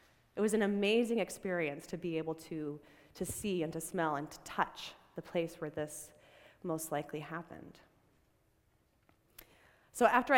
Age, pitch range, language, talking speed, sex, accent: 30-49, 160-220 Hz, English, 150 wpm, female, American